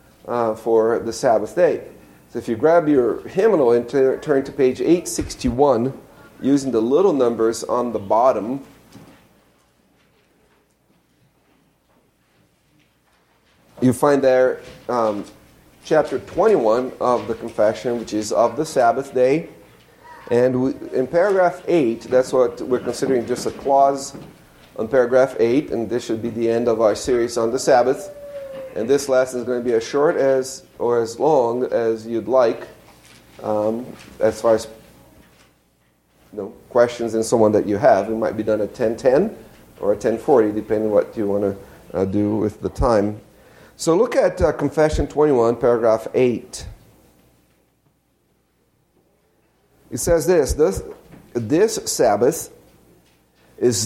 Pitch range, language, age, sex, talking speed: 110-135 Hz, English, 40-59, male, 140 wpm